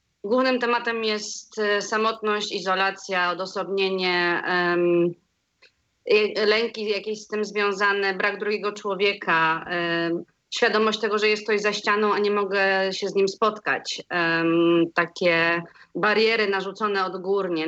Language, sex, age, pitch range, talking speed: Polish, female, 30-49, 195-220 Hz, 110 wpm